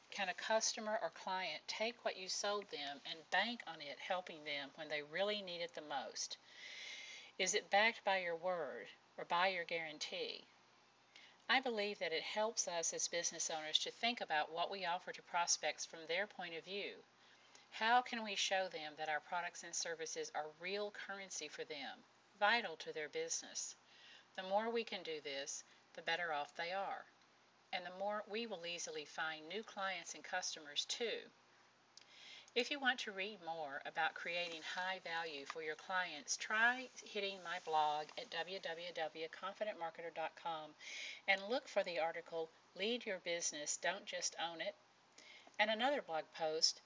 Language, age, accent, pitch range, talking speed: English, 50-69, American, 165-220 Hz, 170 wpm